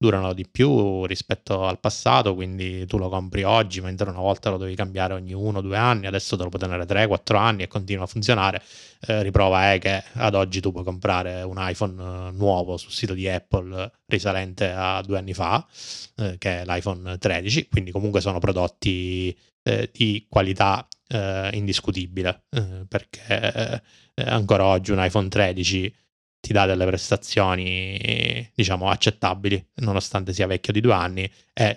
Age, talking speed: 20-39, 165 wpm